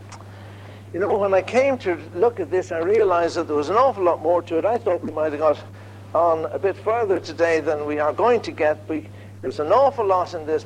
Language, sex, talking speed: English, male, 250 wpm